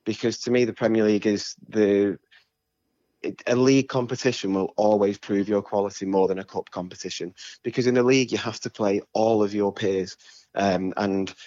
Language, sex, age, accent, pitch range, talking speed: English, male, 20-39, British, 95-110 Hz, 185 wpm